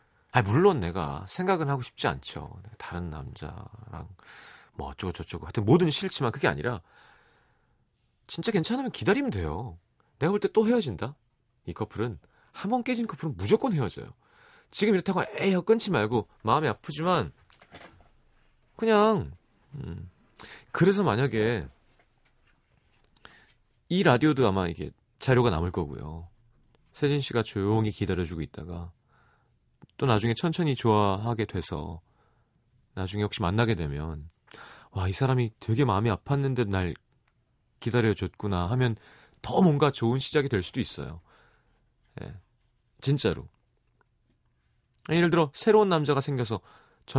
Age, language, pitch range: 30-49, Korean, 95-145 Hz